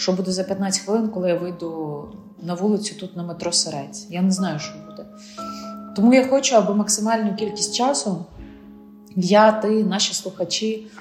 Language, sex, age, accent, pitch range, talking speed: Ukrainian, female, 30-49, native, 175-220 Hz, 165 wpm